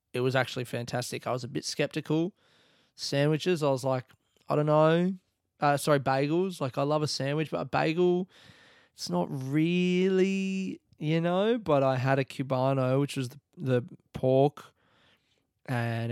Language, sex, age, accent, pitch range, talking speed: English, male, 20-39, Australian, 120-140 Hz, 160 wpm